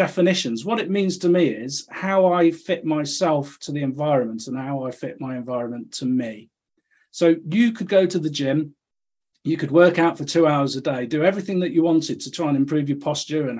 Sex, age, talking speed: male, 40-59, 220 wpm